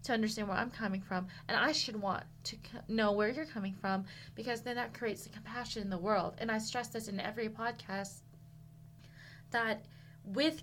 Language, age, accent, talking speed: English, 20-39, American, 190 wpm